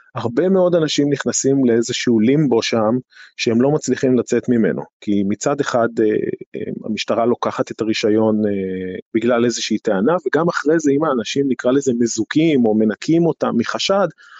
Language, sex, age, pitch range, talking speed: Hebrew, male, 30-49, 110-140 Hz, 140 wpm